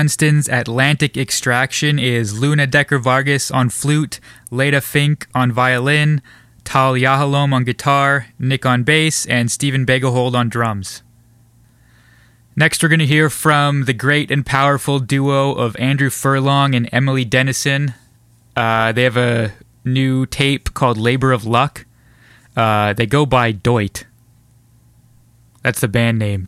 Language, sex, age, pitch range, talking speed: English, male, 20-39, 120-140 Hz, 135 wpm